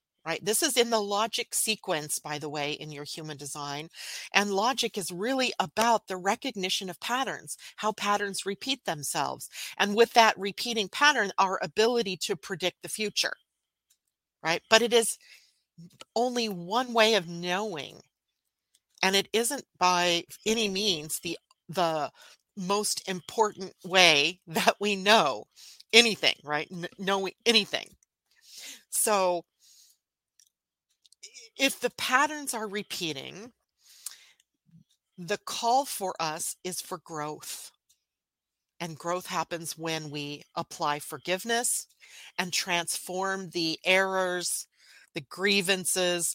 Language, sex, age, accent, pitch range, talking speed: English, female, 40-59, American, 170-220 Hz, 120 wpm